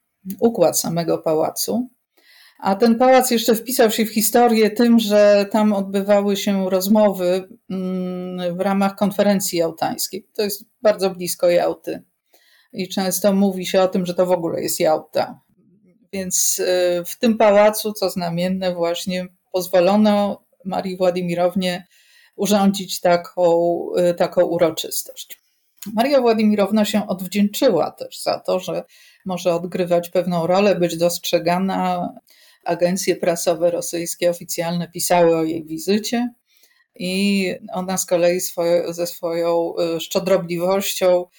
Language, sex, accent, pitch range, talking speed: Polish, female, native, 175-205 Hz, 115 wpm